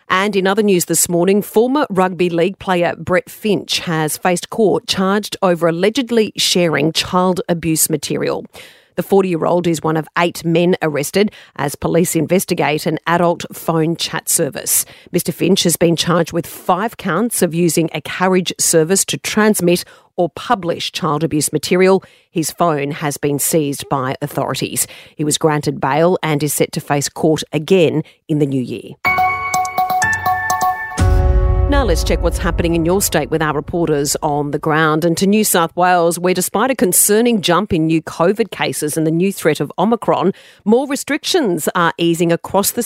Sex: female